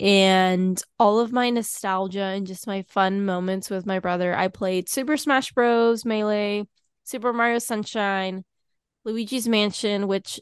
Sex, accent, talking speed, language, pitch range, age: female, American, 145 wpm, English, 190-225 Hz, 10-29